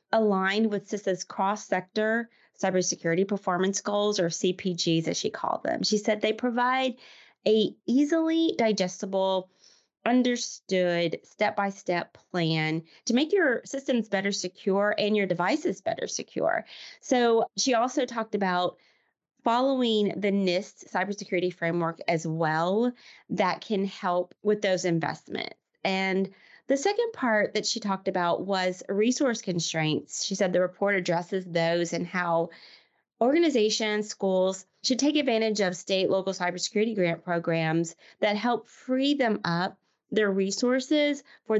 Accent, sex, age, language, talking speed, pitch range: American, female, 30-49, English, 130 wpm, 180-235 Hz